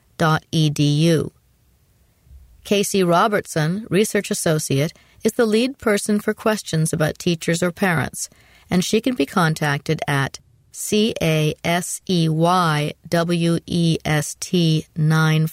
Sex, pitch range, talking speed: female, 155-205 Hz, 125 wpm